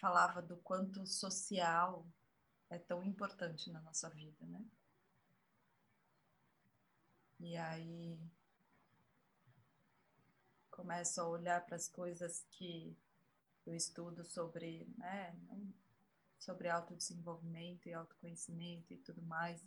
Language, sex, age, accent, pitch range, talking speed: Portuguese, female, 20-39, Brazilian, 165-175 Hz, 95 wpm